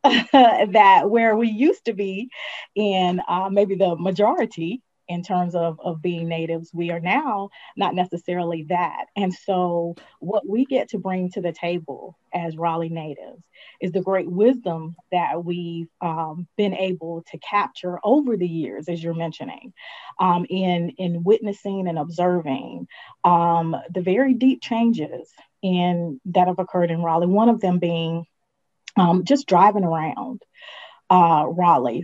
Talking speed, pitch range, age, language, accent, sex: 150 wpm, 170-200 Hz, 30-49, English, American, female